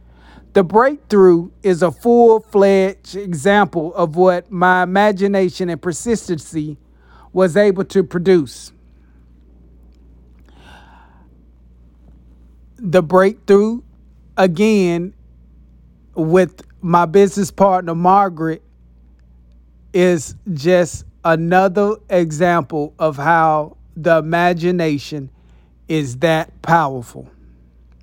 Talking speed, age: 75 wpm, 40-59